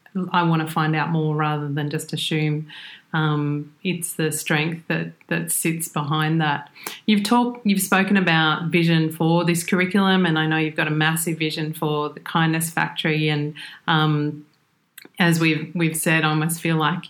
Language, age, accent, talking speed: English, 30-49, Australian, 175 wpm